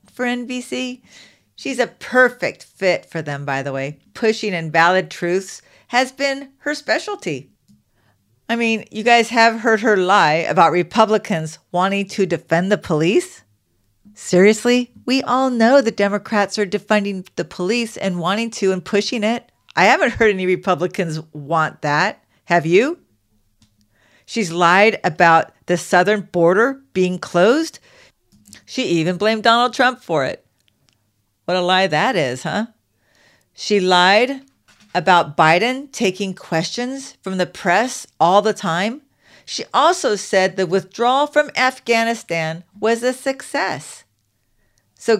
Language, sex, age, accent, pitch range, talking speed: English, female, 50-69, American, 175-245 Hz, 135 wpm